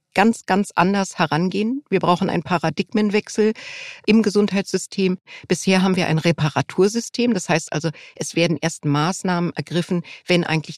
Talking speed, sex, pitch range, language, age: 140 wpm, female, 165-205 Hz, German, 50-69